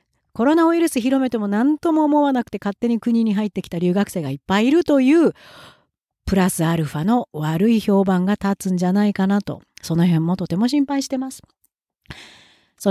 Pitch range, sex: 190-285 Hz, female